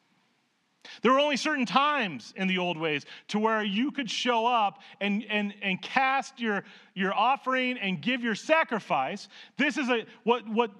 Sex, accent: male, American